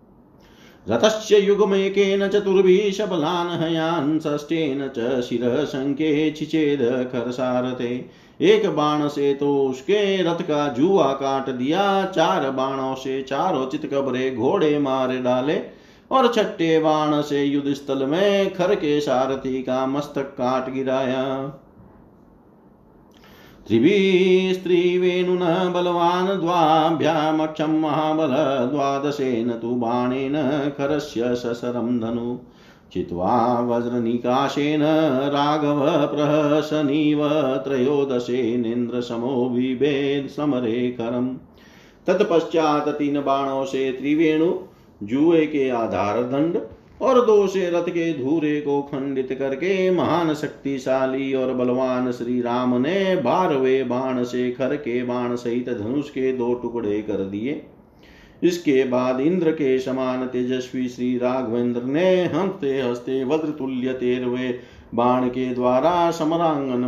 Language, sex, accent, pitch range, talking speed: Hindi, male, native, 125-155 Hz, 95 wpm